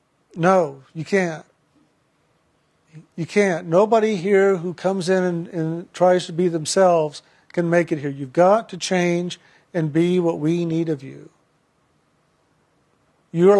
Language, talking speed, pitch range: English, 140 wpm, 160-185 Hz